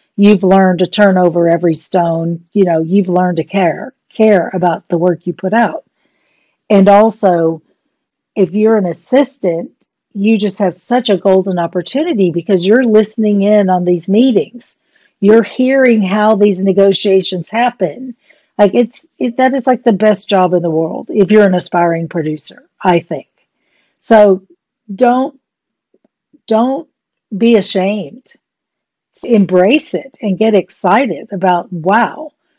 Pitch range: 180-235 Hz